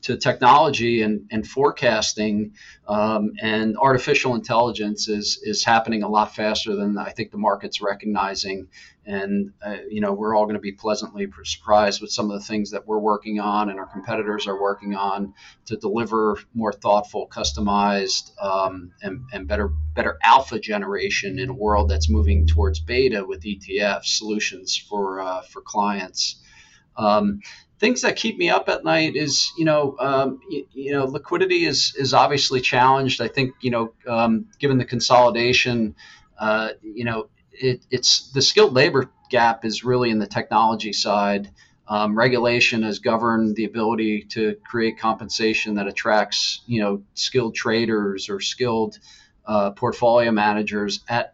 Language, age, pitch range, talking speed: English, 40-59, 100-120 Hz, 155 wpm